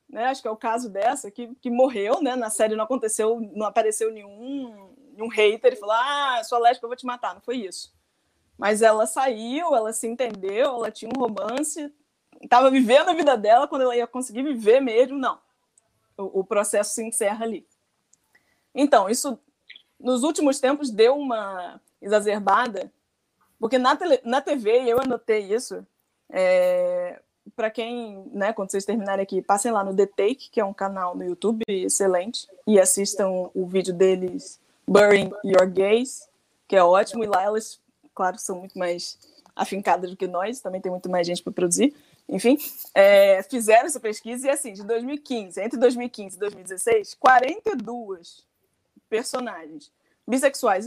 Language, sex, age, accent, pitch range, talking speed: Portuguese, female, 20-39, Brazilian, 200-260 Hz, 165 wpm